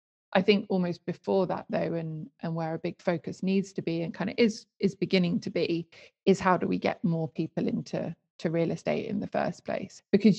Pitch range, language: 170-200 Hz, English